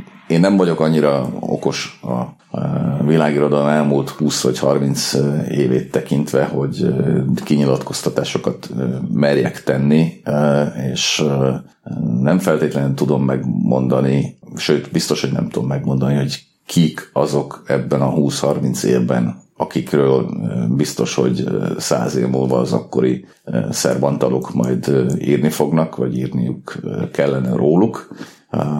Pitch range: 65-75 Hz